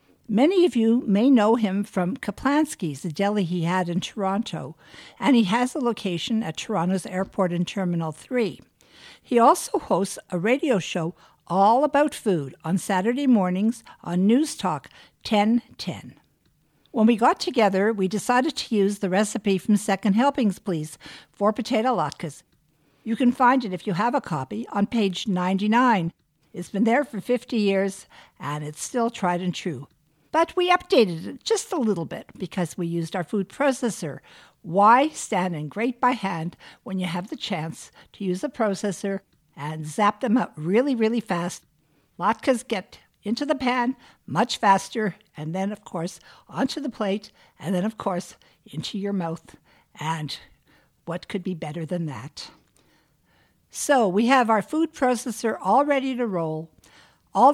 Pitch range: 180-245 Hz